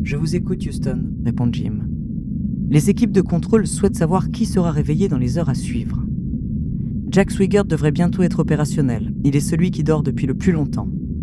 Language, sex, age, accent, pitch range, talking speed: French, female, 40-59, French, 150-200 Hz, 185 wpm